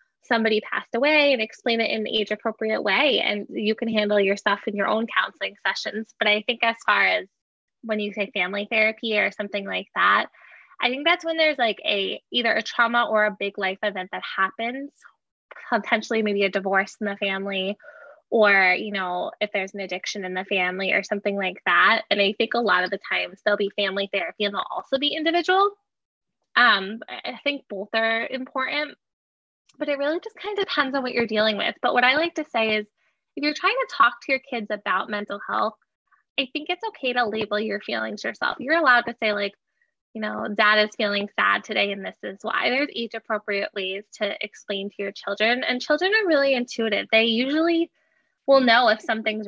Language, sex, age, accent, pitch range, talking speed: English, female, 10-29, American, 205-275 Hz, 210 wpm